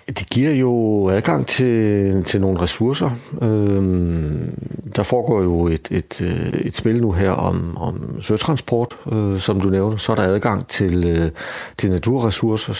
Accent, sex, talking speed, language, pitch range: native, male, 135 wpm, Danish, 90-110 Hz